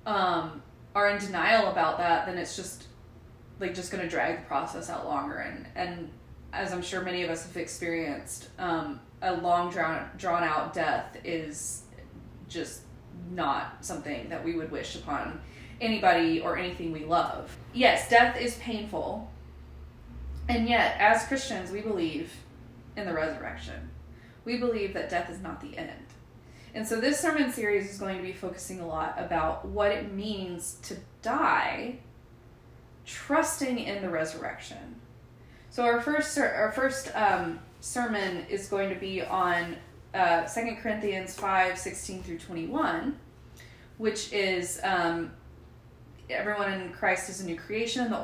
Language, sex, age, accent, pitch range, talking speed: English, female, 20-39, American, 170-215 Hz, 150 wpm